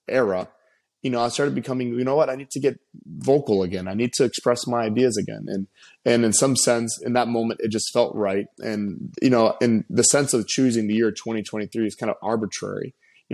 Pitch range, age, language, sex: 105-120 Hz, 20-39, English, male